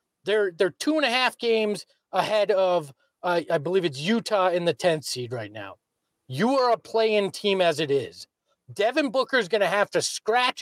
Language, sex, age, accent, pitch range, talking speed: English, male, 40-59, American, 185-270 Hz, 205 wpm